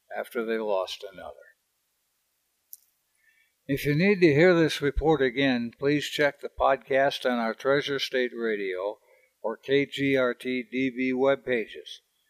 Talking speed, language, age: 115 wpm, English, 60-79